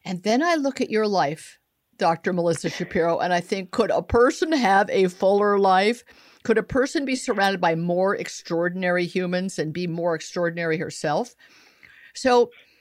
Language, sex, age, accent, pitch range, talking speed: English, female, 50-69, American, 175-240 Hz, 165 wpm